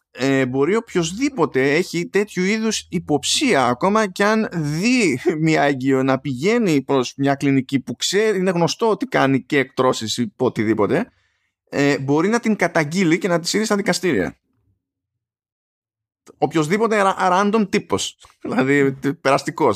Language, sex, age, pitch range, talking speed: Greek, male, 20-39, 125-195 Hz, 135 wpm